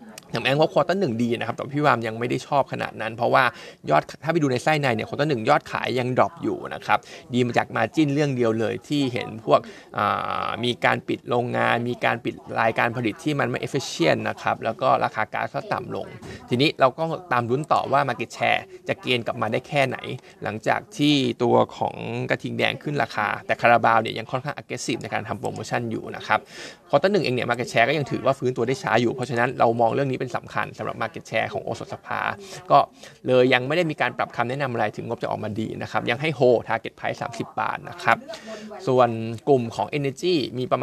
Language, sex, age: Thai, male, 20-39